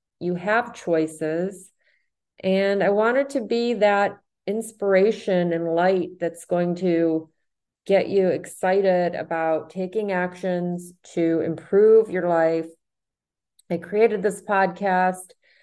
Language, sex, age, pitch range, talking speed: English, female, 30-49, 165-190 Hz, 110 wpm